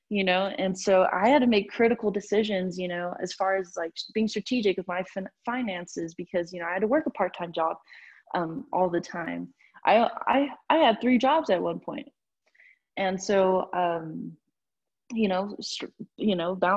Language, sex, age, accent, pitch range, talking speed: English, female, 20-39, American, 175-240 Hz, 195 wpm